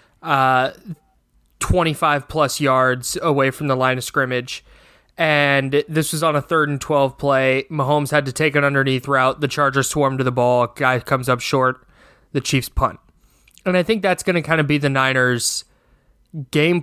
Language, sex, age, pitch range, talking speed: English, male, 20-39, 130-155 Hz, 180 wpm